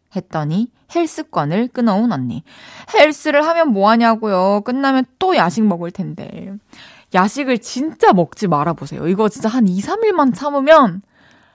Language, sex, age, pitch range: Korean, female, 20-39, 185-265 Hz